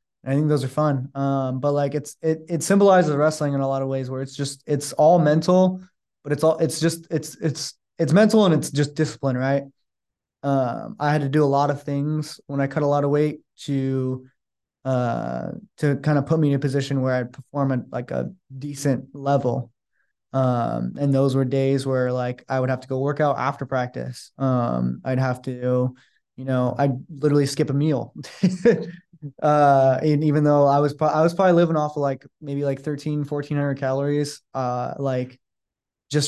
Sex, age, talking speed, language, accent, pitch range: male, 20-39, 200 wpm, English, American, 130-150 Hz